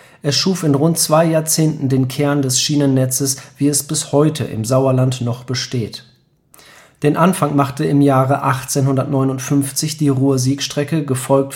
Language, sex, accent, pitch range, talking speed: English, male, German, 130-145 Hz, 140 wpm